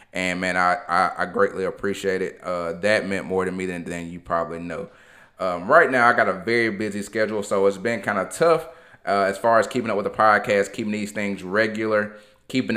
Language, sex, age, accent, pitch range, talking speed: English, male, 30-49, American, 95-110 Hz, 225 wpm